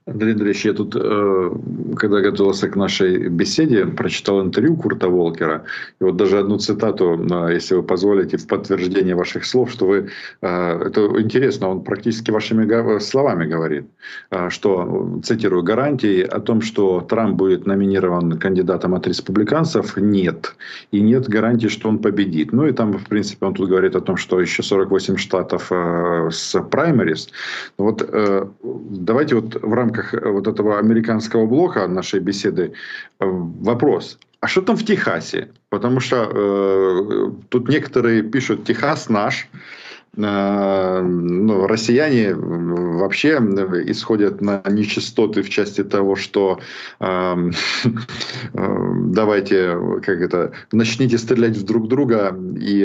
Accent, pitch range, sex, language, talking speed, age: native, 95-110 Hz, male, Ukrainian, 130 wpm, 50-69